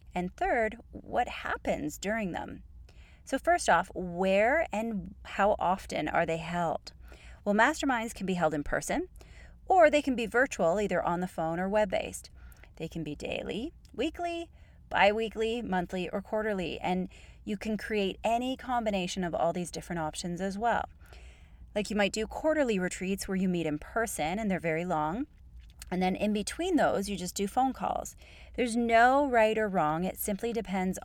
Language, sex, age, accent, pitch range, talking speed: English, female, 30-49, American, 170-230 Hz, 170 wpm